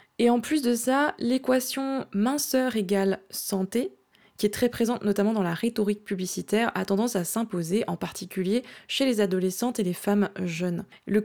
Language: French